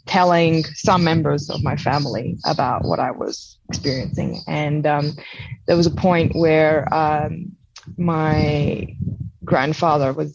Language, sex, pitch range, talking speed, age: English, female, 155-190 Hz, 130 wpm, 20-39